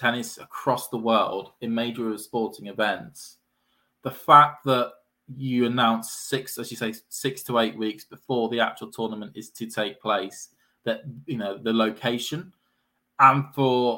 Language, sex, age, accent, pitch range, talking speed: English, male, 20-39, British, 110-130 Hz, 155 wpm